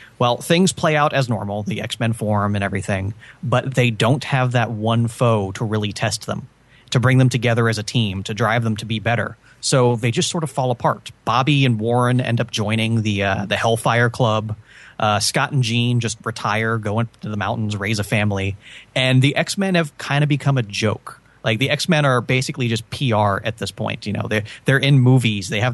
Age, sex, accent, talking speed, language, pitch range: 30-49, male, American, 215 wpm, English, 105-125 Hz